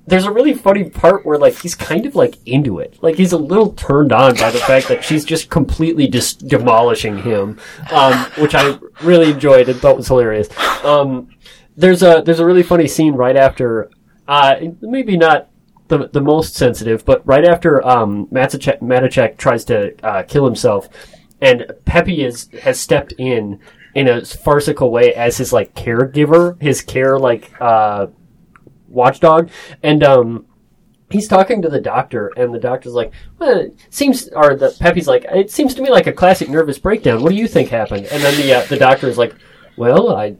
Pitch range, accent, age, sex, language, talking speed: 120-170 Hz, American, 20-39, male, English, 190 wpm